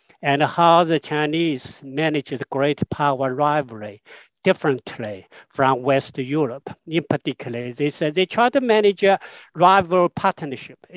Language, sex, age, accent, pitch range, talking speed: English, male, 60-79, Japanese, 145-195 Hz, 130 wpm